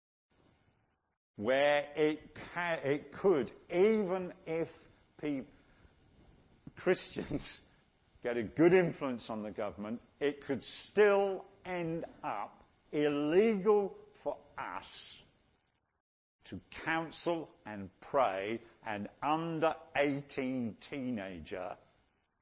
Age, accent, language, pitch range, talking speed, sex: 50-69, British, English, 100-145 Hz, 80 wpm, male